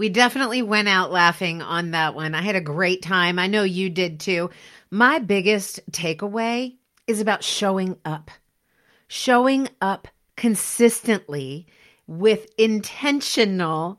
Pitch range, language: 175-235 Hz, English